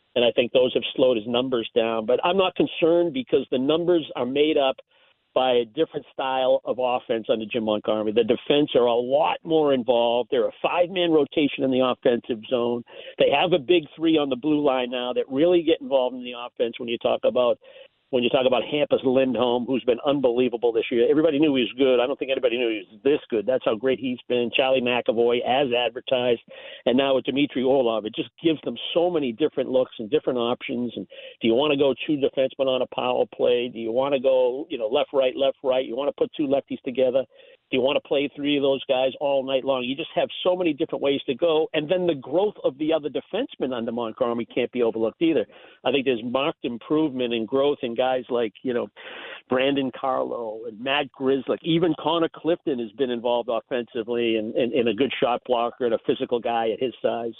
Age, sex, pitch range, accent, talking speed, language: 50-69, male, 125-160 Hz, American, 230 wpm, English